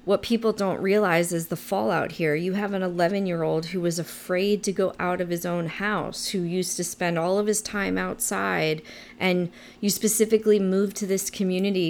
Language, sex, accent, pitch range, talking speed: English, female, American, 170-200 Hz, 190 wpm